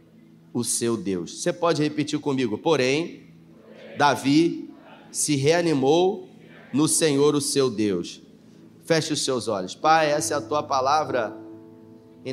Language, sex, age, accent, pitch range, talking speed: Portuguese, male, 30-49, Brazilian, 120-170 Hz, 130 wpm